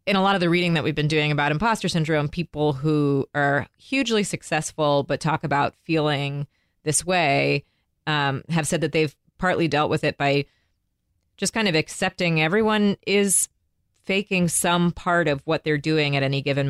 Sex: female